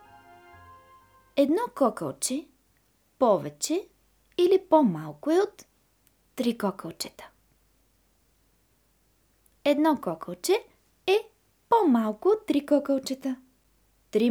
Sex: female